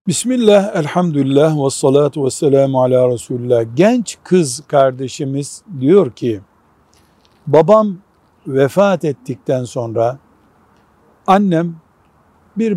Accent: native